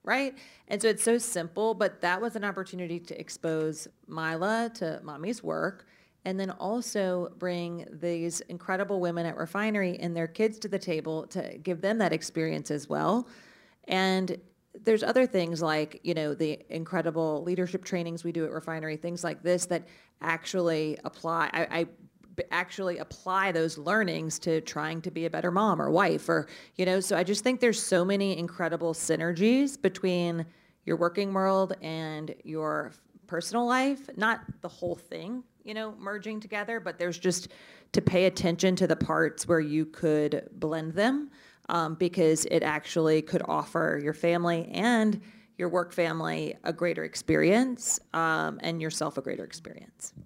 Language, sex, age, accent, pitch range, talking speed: English, female, 30-49, American, 165-205 Hz, 165 wpm